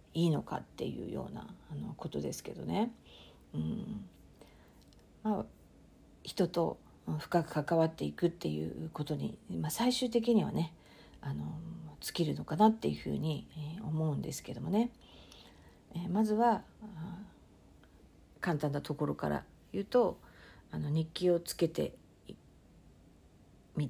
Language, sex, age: Japanese, female, 50-69